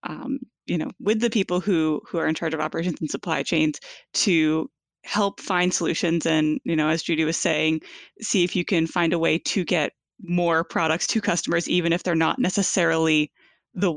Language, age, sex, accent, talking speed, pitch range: English, 20-39, female, American, 200 wpm, 165-195 Hz